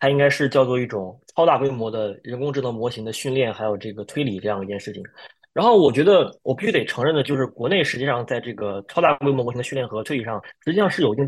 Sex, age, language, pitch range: male, 20-39, Chinese, 115-150 Hz